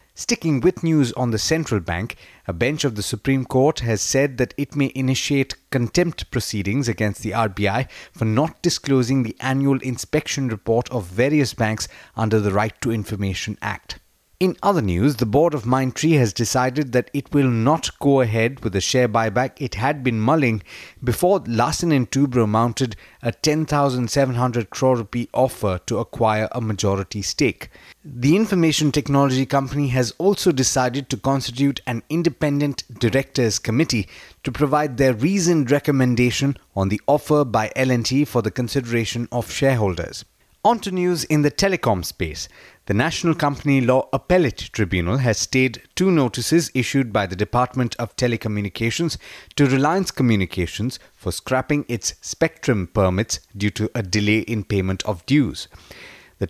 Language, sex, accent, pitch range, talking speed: English, male, Indian, 110-140 Hz, 155 wpm